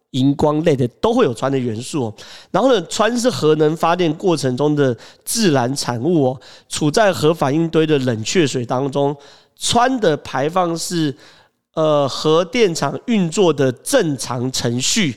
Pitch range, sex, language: 135-185 Hz, male, Chinese